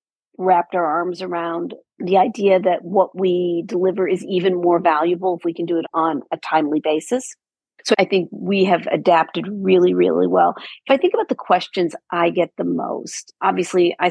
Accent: American